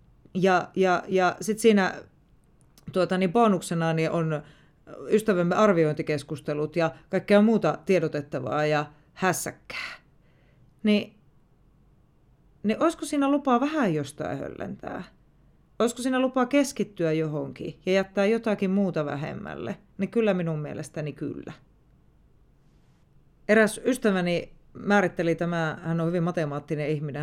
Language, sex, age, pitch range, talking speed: Finnish, female, 30-49, 150-200 Hz, 110 wpm